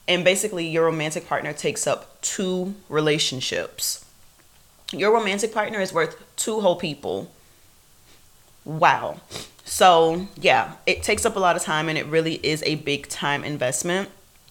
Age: 30-49